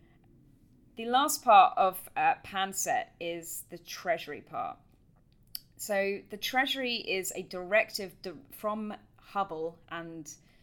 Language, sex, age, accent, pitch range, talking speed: English, female, 20-39, British, 160-210 Hz, 105 wpm